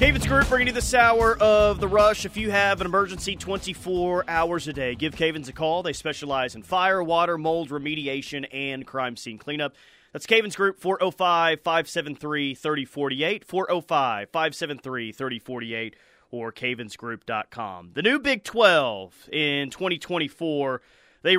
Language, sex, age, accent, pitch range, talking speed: English, male, 30-49, American, 145-195 Hz, 130 wpm